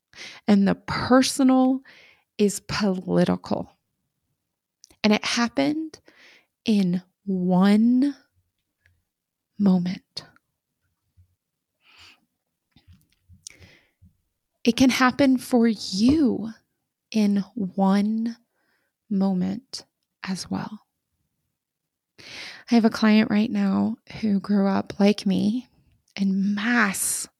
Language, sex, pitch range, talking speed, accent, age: English, female, 195-245 Hz, 75 wpm, American, 20-39